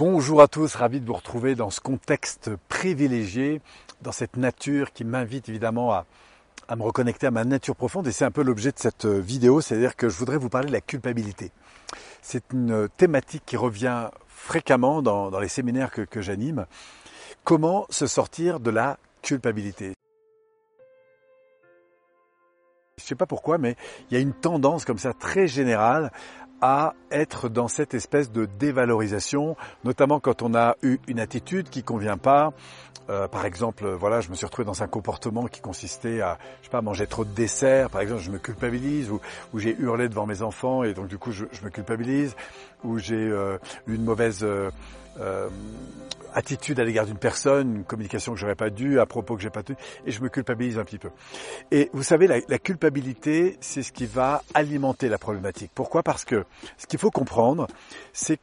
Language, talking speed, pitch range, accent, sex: French, 190 wpm, 110-140 Hz, French, male